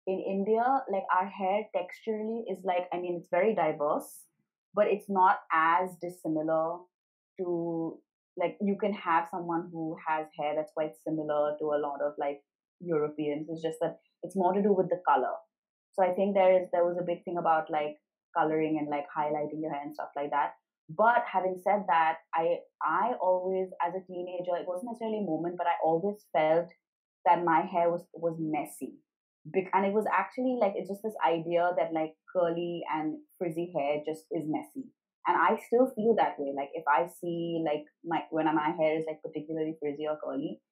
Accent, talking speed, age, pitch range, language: Indian, 195 wpm, 30-49, 155-190 Hz, English